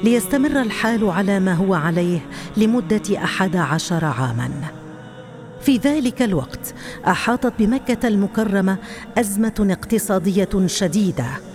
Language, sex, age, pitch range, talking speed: Arabic, female, 50-69, 185-225 Hz, 100 wpm